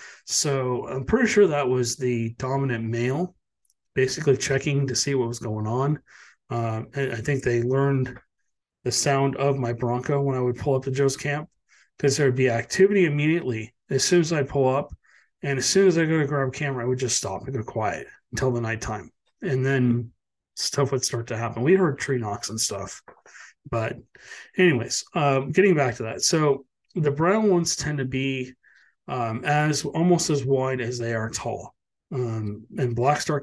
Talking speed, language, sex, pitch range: 190 wpm, English, male, 120-145 Hz